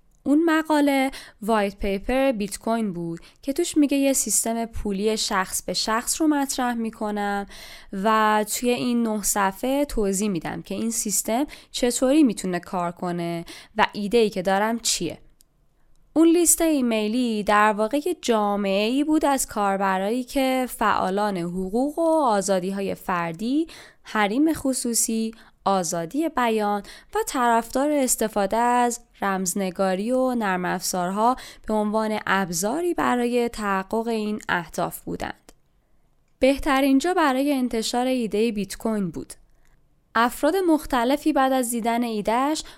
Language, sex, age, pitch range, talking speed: Persian, female, 10-29, 200-265 Hz, 120 wpm